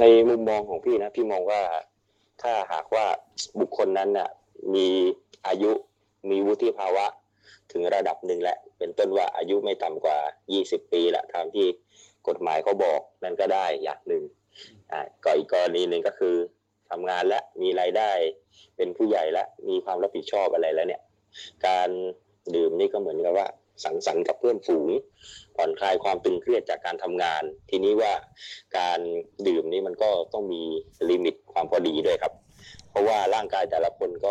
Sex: male